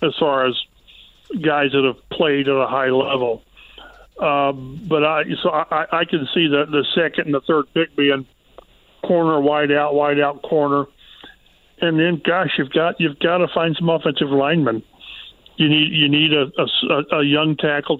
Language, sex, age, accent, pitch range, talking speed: English, male, 50-69, American, 140-160 Hz, 180 wpm